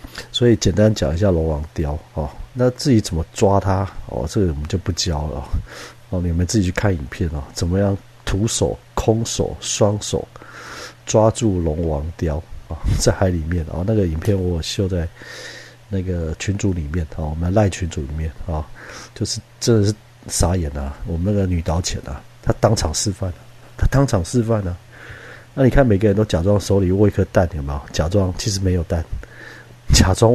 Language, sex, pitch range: Chinese, male, 85-110 Hz